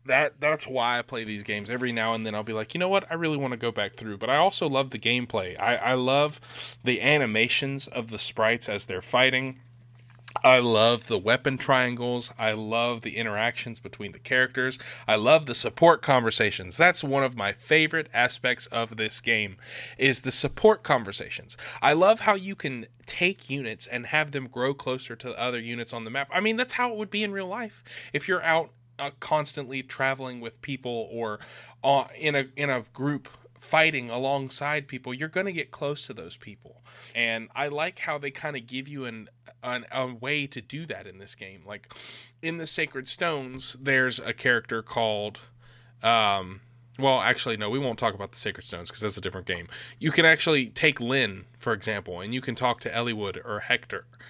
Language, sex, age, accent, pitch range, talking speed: English, male, 30-49, American, 115-140 Hz, 205 wpm